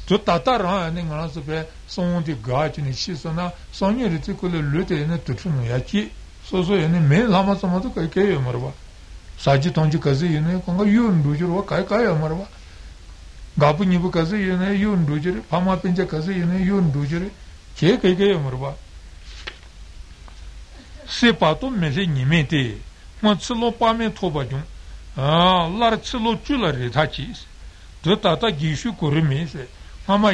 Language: Italian